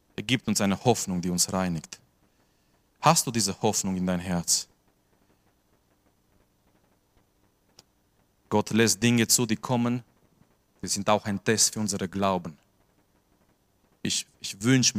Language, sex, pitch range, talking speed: German, male, 95-115 Hz, 130 wpm